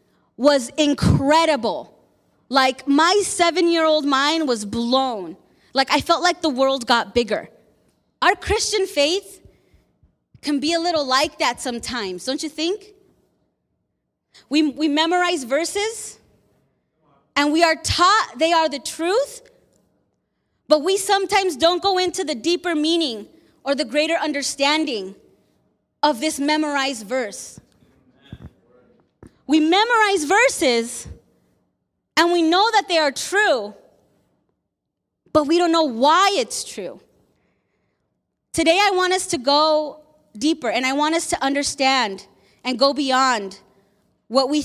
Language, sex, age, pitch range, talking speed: English, female, 20-39, 265-345 Hz, 125 wpm